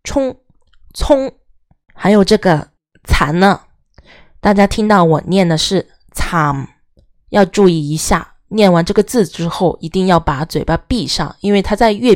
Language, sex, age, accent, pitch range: Chinese, female, 20-39, native, 165-230 Hz